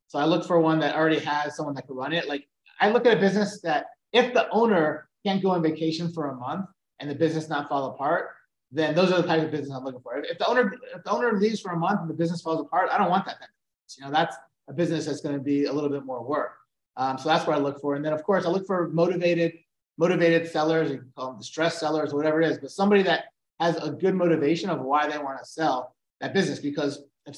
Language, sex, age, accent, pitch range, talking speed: English, male, 30-49, American, 150-190 Hz, 275 wpm